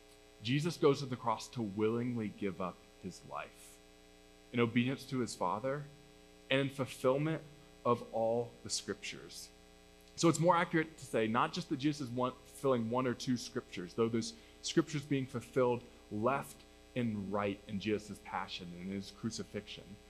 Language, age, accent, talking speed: English, 20-39, American, 160 wpm